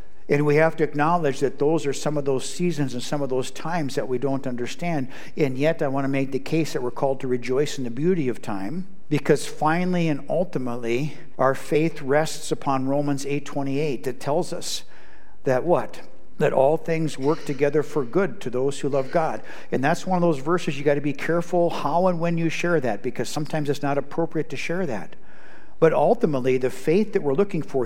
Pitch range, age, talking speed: 125-160 Hz, 60-79, 215 wpm